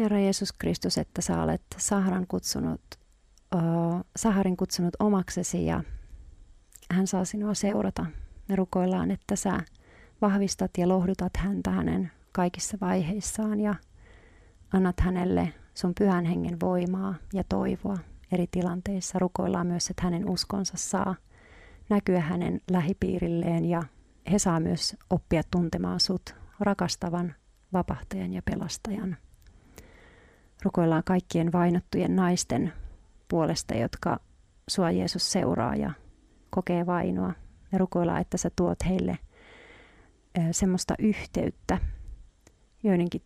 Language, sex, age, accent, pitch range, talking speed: Finnish, female, 40-59, native, 165-190 Hz, 105 wpm